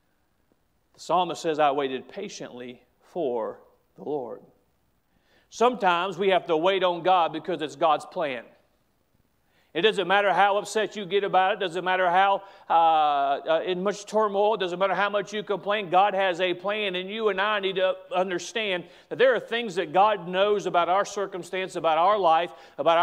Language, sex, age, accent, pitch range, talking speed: English, male, 40-59, American, 185-225 Hz, 180 wpm